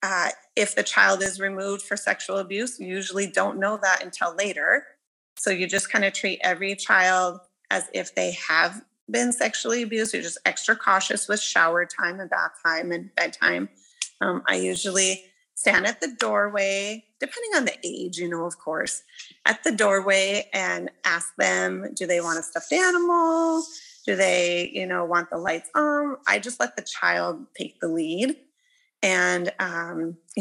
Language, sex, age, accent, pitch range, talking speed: English, female, 30-49, American, 185-265 Hz, 175 wpm